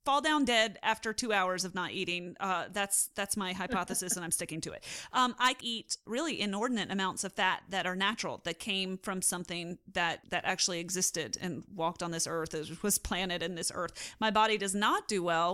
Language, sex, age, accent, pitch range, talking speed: English, female, 30-49, American, 195-250 Hz, 210 wpm